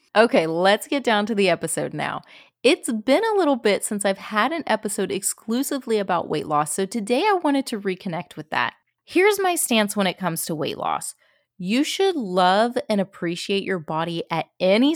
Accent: American